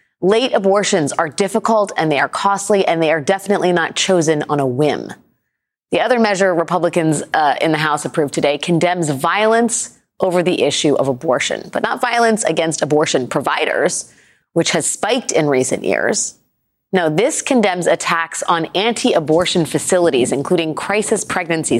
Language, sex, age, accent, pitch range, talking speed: English, female, 30-49, American, 160-200 Hz, 155 wpm